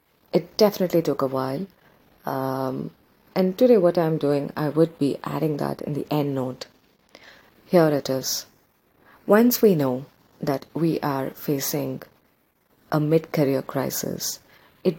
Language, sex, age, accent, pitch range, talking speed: English, female, 30-49, Indian, 140-180 Hz, 135 wpm